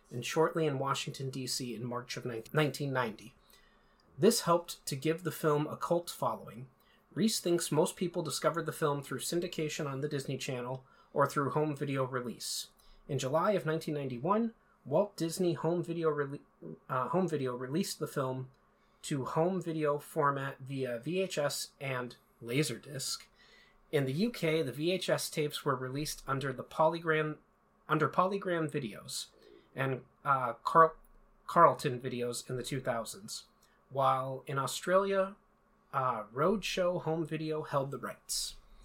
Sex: male